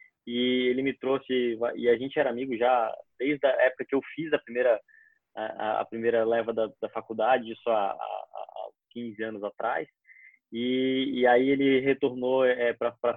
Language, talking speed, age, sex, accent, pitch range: Portuguese, 180 wpm, 20-39, male, Brazilian, 120-140 Hz